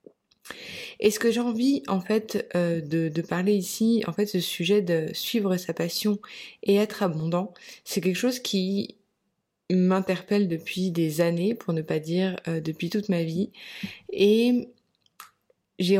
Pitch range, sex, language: 170-210 Hz, female, French